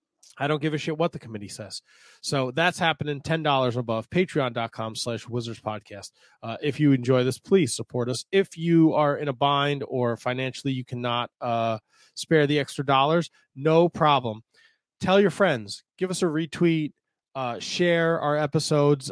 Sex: male